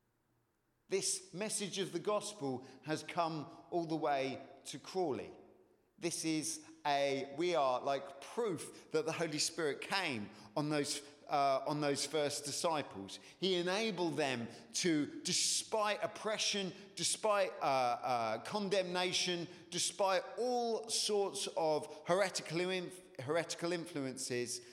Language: English